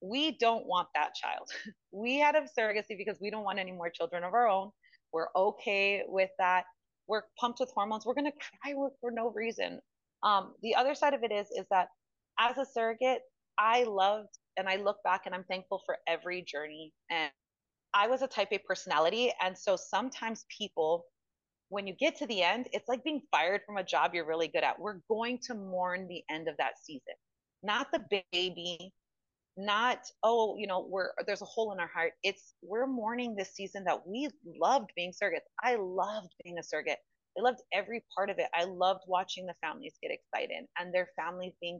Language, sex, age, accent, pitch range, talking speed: English, female, 30-49, American, 170-225 Hz, 200 wpm